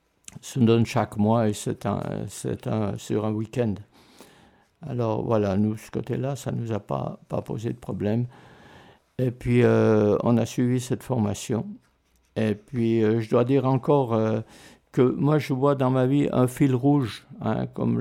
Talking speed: 185 wpm